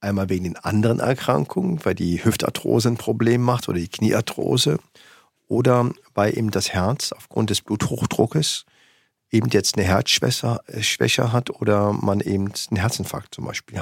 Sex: male